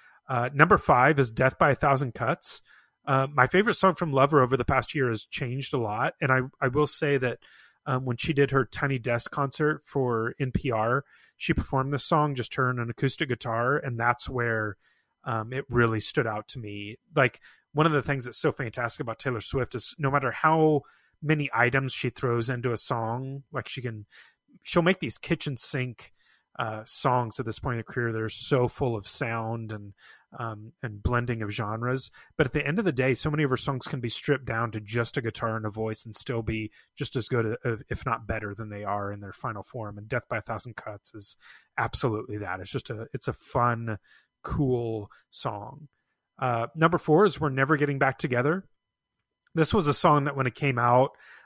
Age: 30-49